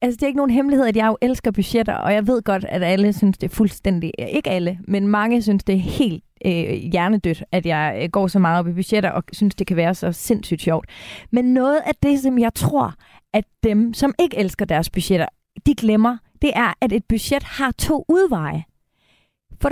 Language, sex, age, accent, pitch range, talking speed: Danish, female, 30-49, native, 195-265 Hz, 215 wpm